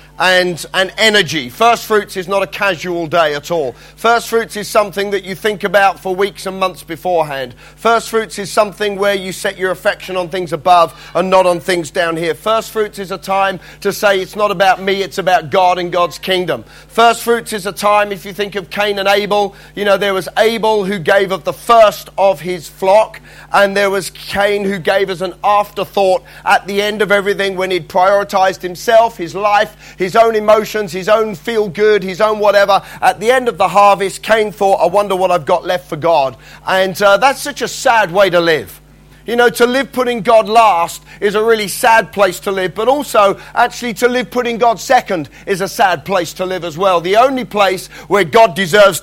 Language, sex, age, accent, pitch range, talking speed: English, male, 40-59, British, 185-215 Hz, 215 wpm